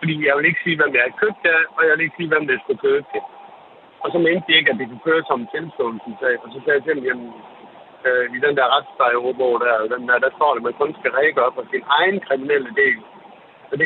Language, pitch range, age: Danish, 135-205 Hz, 60-79